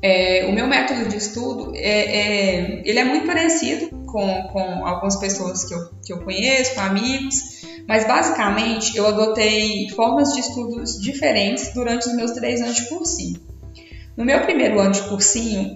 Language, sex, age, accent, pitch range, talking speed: Portuguese, female, 10-29, Brazilian, 190-235 Hz, 170 wpm